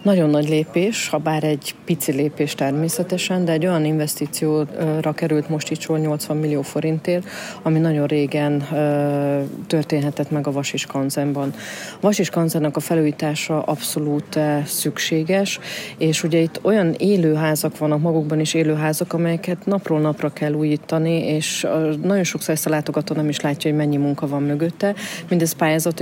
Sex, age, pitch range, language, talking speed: female, 30-49, 150-165 Hz, Hungarian, 140 wpm